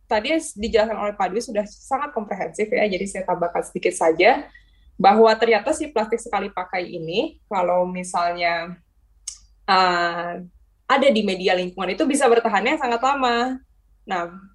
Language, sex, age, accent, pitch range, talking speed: Indonesian, female, 10-29, native, 180-230 Hz, 140 wpm